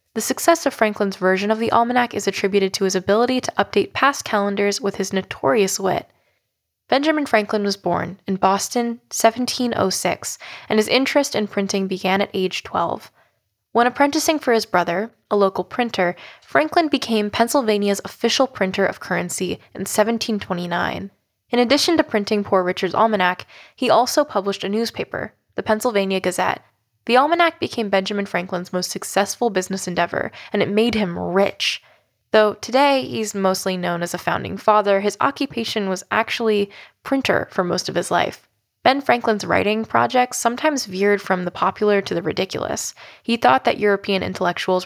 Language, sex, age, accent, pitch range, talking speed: English, female, 10-29, American, 190-235 Hz, 160 wpm